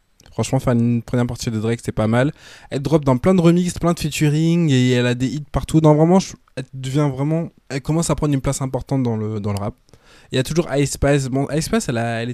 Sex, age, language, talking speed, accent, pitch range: male, 20-39, French, 265 wpm, French, 115-140 Hz